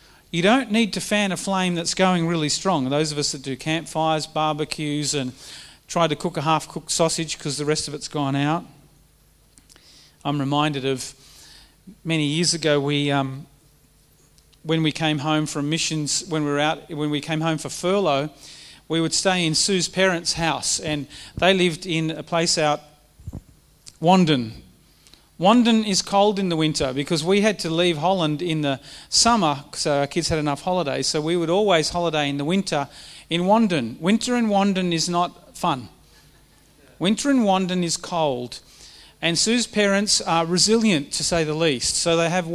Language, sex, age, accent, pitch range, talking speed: English, male, 40-59, Australian, 150-190 Hz, 180 wpm